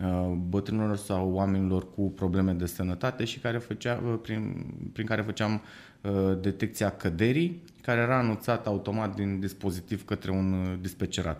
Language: Romanian